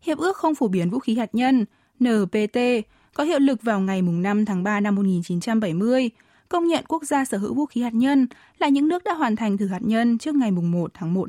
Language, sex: Vietnamese, female